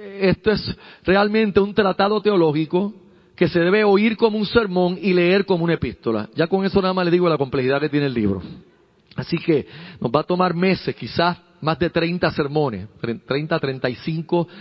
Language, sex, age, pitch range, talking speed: Spanish, male, 40-59, 140-185 Hz, 185 wpm